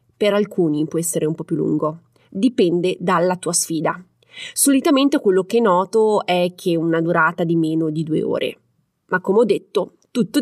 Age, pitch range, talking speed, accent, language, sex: 30-49, 180-240 Hz, 175 wpm, native, Italian, female